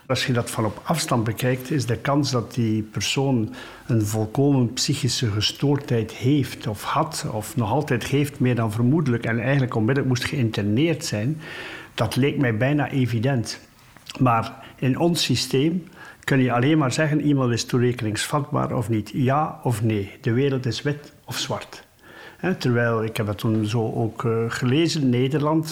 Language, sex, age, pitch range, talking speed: Dutch, male, 50-69, 115-145 Hz, 170 wpm